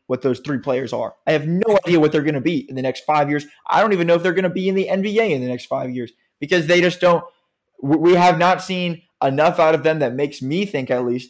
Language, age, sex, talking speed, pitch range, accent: English, 20-39, male, 285 wpm, 130-170 Hz, American